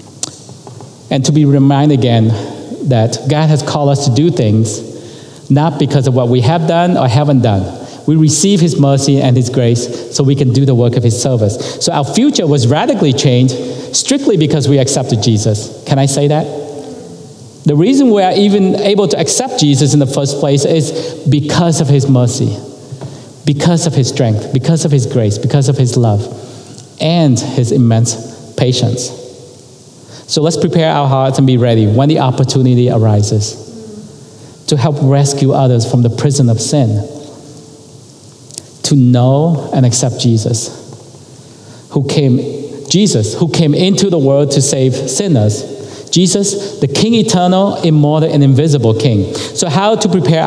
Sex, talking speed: male, 165 wpm